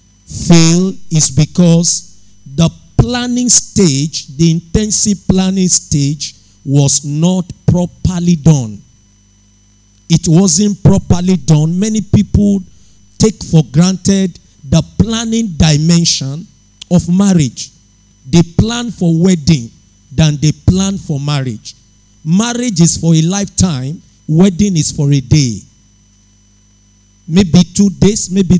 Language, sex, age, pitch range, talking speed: English, male, 50-69, 135-195 Hz, 105 wpm